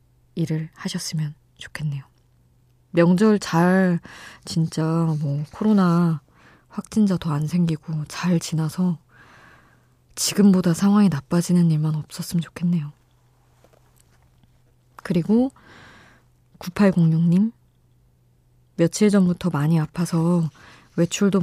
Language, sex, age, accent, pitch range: Korean, female, 20-39, native, 145-175 Hz